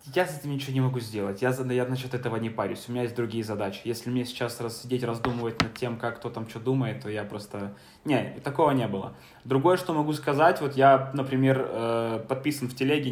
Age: 20-39